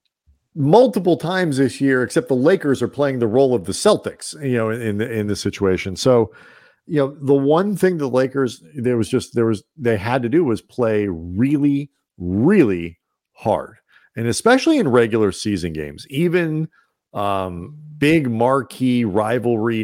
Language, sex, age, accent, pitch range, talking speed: English, male, 40-59, American, 105-145 Hz, 160 wpm